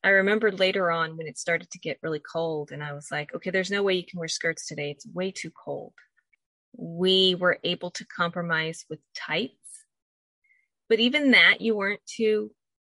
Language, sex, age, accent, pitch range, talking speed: English, female, 30-49, American, 170-230 Hz, 190 wpm